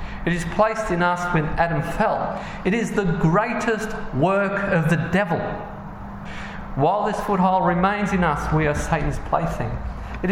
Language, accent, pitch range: English, Australian, 125-195 Hz